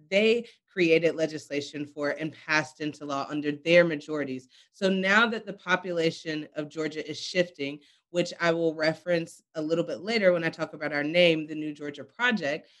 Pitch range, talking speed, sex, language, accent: 155-185 Hz, 180 wpm, female, English, American